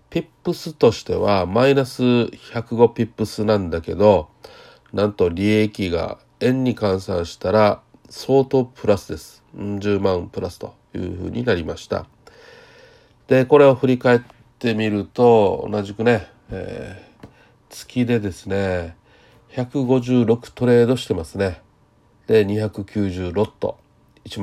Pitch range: 95-125 Hz